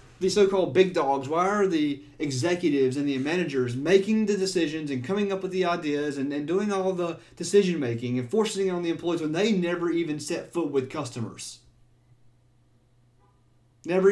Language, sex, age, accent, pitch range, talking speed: English, male, 30-49, American, 120-175 Hz, 175 wpm